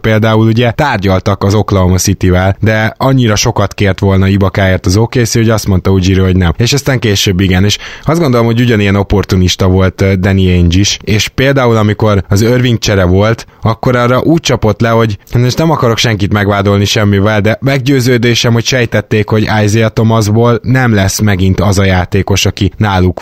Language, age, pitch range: Hungarian, 20-39, 100-120 Hz